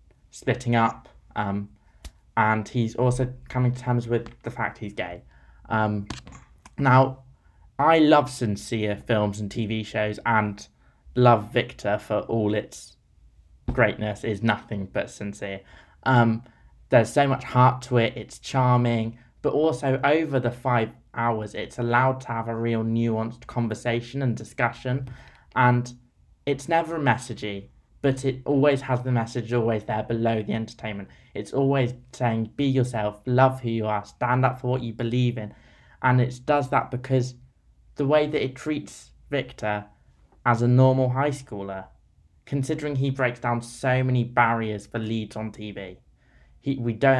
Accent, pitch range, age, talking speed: British, 105-130 Hz, 20-39, 155 wpm